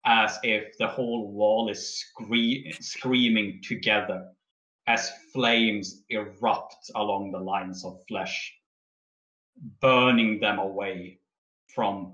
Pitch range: 95-110 Hz